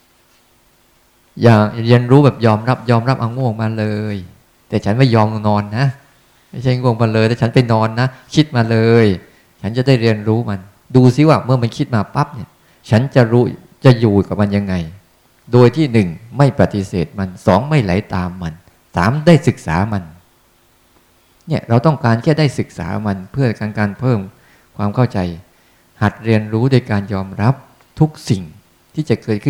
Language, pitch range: Thai, 95-125 Hz